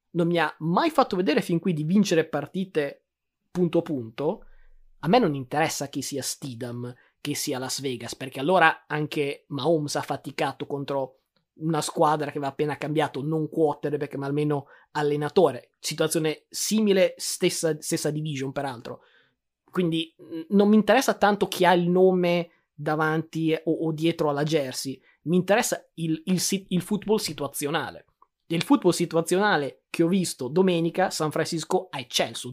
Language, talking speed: Italian, 155 wpm